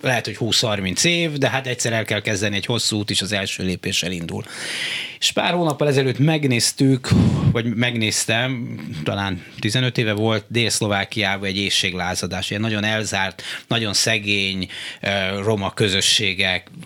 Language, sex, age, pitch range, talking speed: Hungarian, male, 30-49, 105-140 Hz, 140 wpm